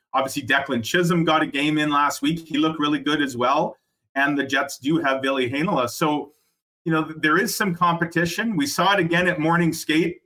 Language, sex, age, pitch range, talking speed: English, male, 30-49, 125-170 Hz, 210 wpm